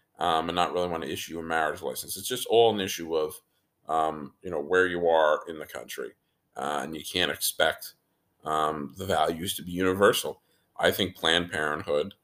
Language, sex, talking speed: English, male, 195 wpm